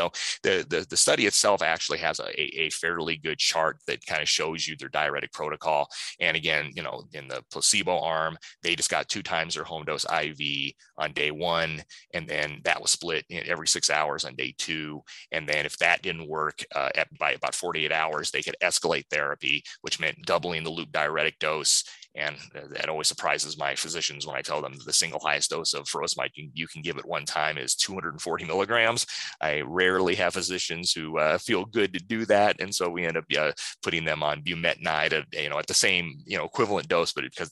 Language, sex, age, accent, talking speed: English, male, 30-49, American, 210 wpm